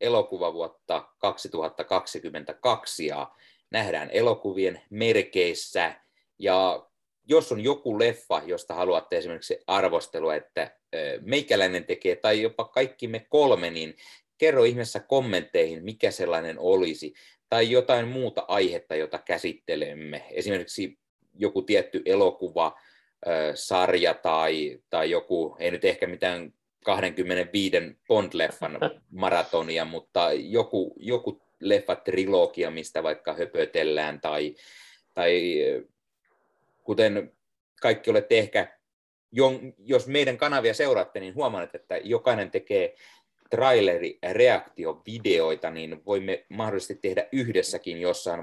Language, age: Finnish, 30-49